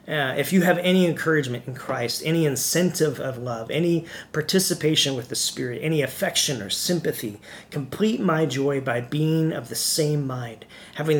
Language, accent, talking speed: English, American, 165 wpm